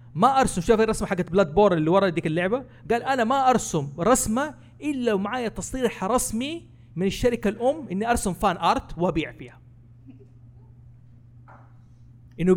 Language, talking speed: Arabic, 145 wpm